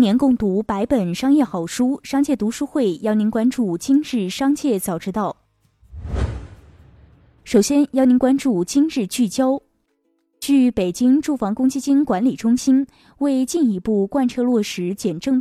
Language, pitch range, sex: Chinese, 190-265 Hz, female